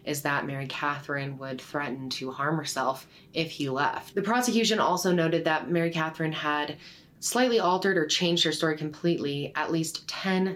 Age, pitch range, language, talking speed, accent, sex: 20-39, 145-190 Hz, English, 170 wpm, American, female